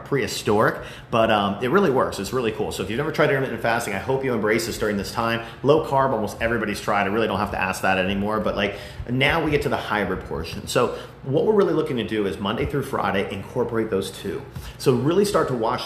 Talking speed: 245 wpm